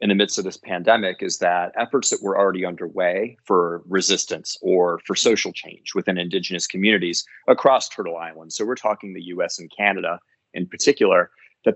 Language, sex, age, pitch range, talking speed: English, male, 30-49, 90-105 Hz, 180 wpm